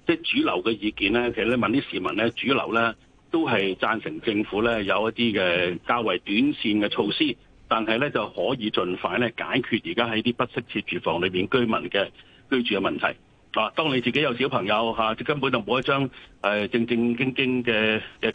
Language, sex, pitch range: Chinese, male, 115-145 Hz